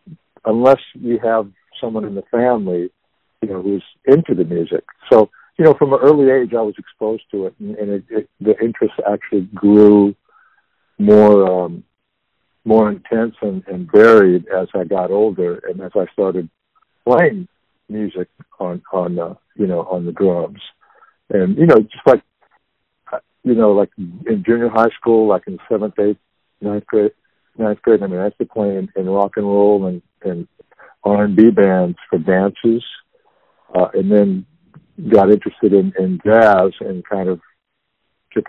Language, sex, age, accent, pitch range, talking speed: English, male, 50-69, American, 95-120 Hz, 165 wpm